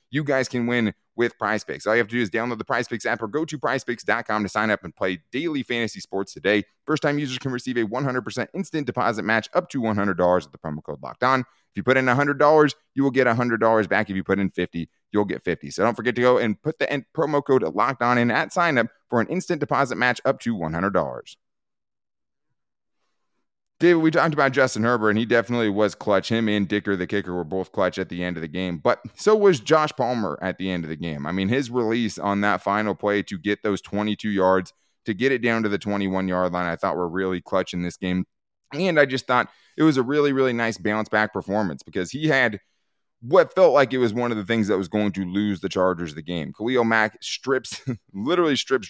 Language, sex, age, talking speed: English, male, 30-49, 235 wpm